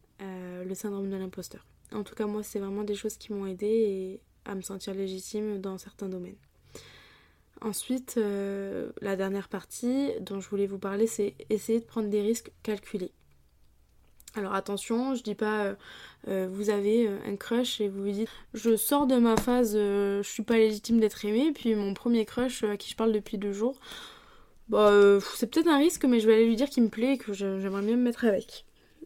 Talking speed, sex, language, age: 205 wpm, female, French, 20-39